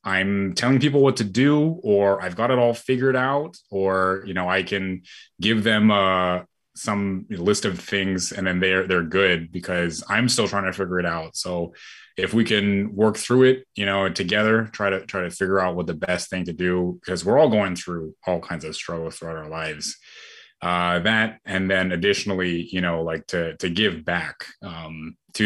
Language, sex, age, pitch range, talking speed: English, male, 20-39, 85-105 Hz, 200 wpm